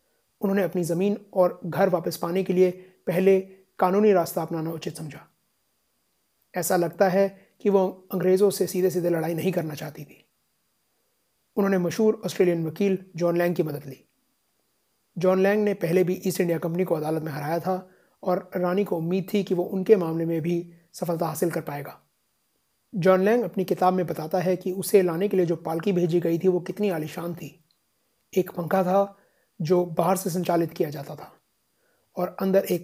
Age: 30-49